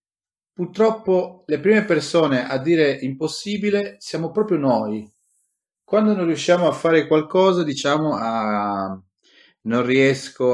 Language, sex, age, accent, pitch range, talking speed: Italian, male, 30-49, native, 110-175 Hz, 115 wpm